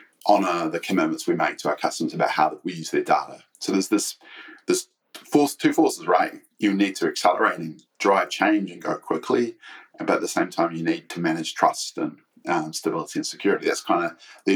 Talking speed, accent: 210 wpm, Australian